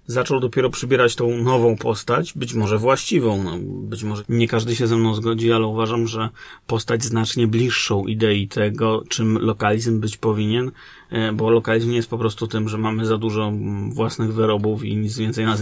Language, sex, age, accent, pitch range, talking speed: Polish, male, 30-49, native, 110-125 Hz, 175 wpm